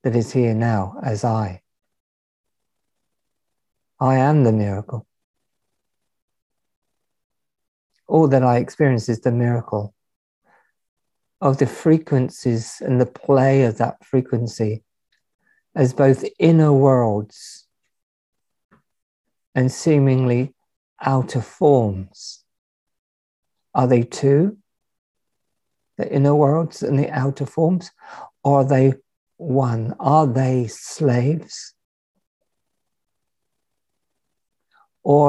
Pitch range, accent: 120-145 Hz, British